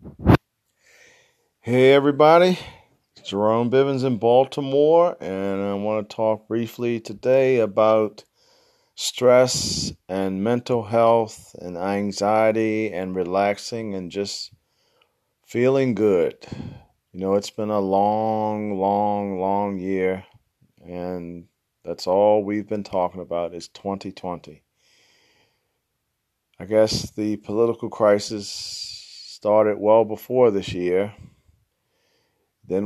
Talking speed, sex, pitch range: 100 wpm, male, 100-115 Hz